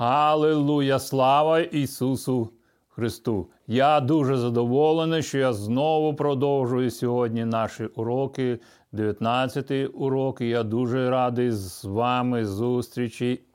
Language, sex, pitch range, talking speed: Ukrainian, male, 125-155 Hz, 95 wpm